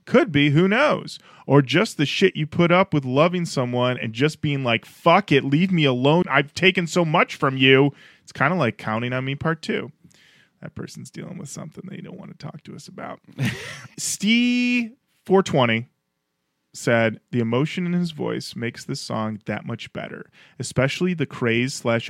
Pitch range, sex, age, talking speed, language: 115-180 Hz, male, 20-39, 185 wpm, English